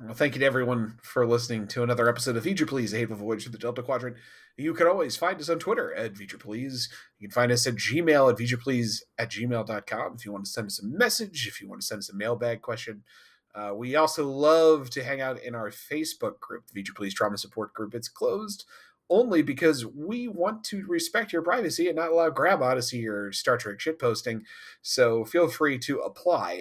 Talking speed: 215 wpm